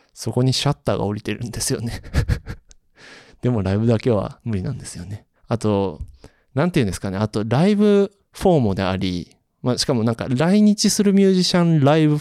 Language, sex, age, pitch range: Japanese, male, 20-39, 105-150 Hz